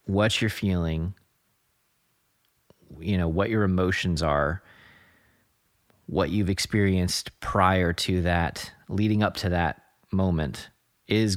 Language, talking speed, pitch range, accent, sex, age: English, 110 wpm, 80-100 Hz, American, male, 30-49